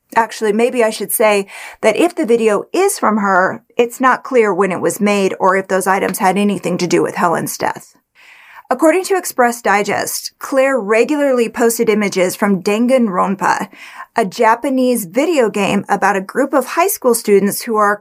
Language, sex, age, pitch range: English, female, 30-49, 200-255 Hz